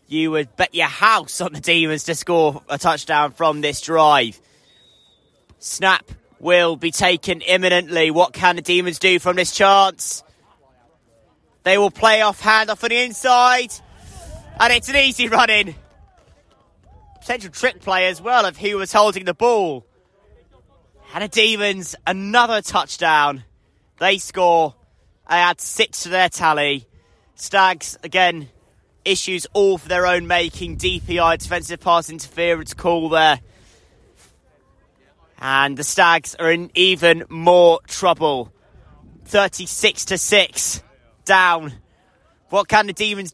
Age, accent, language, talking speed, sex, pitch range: 20-39, British, English, 135 wpm, male, 155-195 Hz